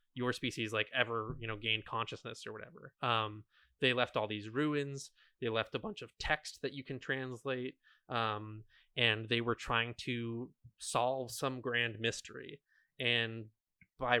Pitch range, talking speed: 115-130 Hz, 160 wpm